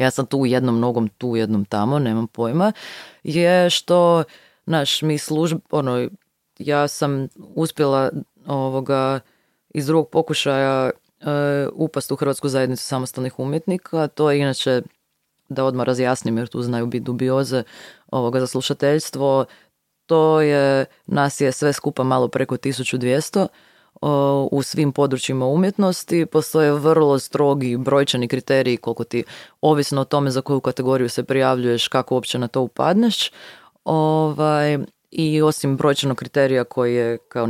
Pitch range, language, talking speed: 125-150 Hz, Croatian, 135 wpm